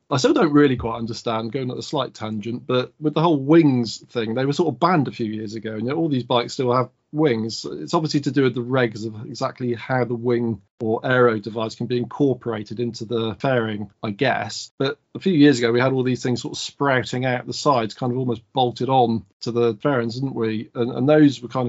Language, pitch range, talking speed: English, 115-130 Hz, 245 wpm